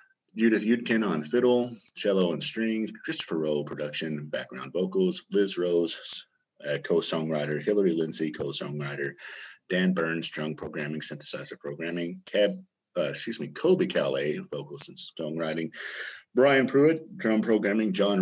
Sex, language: male, English